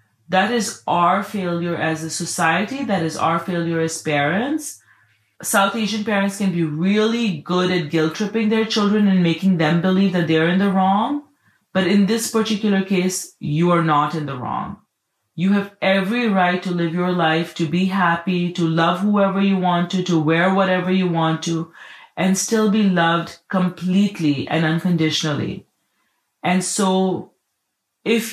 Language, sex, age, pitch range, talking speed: English, female, 30-49, 165-195 Hz, 165 wpm